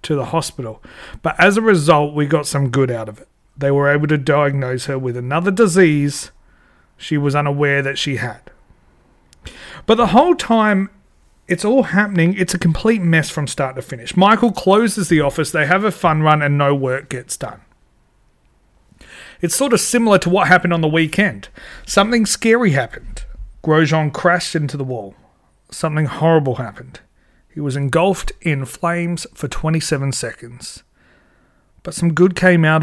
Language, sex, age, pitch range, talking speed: English, male, 30-49, 140-175 Hz, 170 wpm